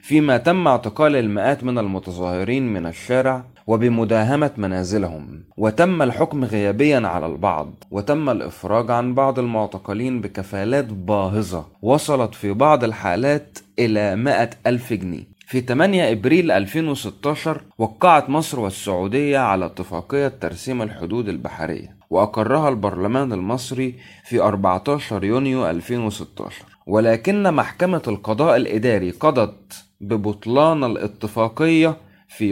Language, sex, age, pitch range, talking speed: Arabic, male, 30-49, 100-140 Hz, 105 wpm